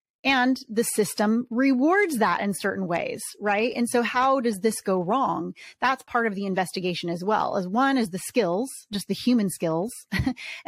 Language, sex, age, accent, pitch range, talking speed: English, female, 30-49, American, 195-245 Hz, 180 wpm